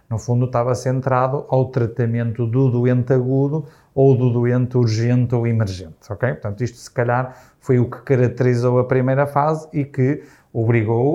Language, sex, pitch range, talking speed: Portuguese, male, 120-140 Hz, 160 wpm